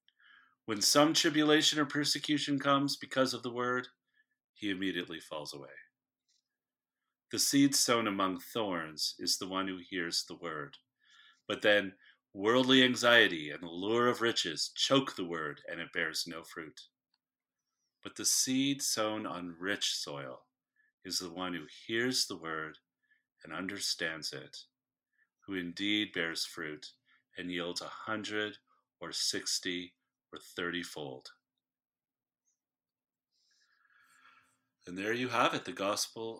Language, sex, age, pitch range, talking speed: English, male, 40-59, 95-135 Hz, 130 wpm